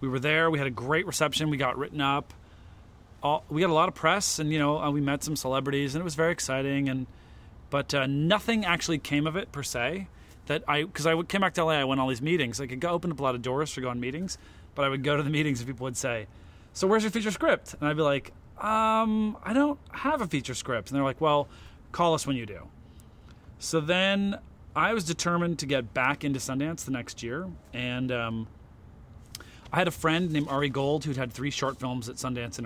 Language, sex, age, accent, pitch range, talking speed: English, male, 30-49, American, 120-150 Hz, 245 wpm